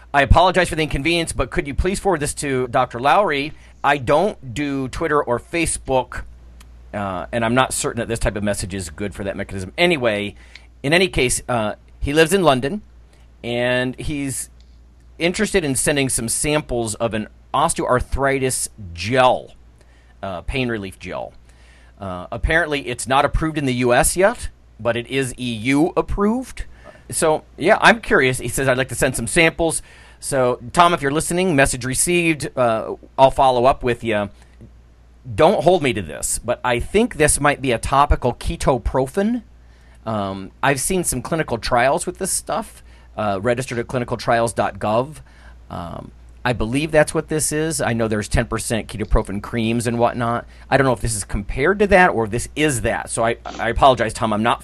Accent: American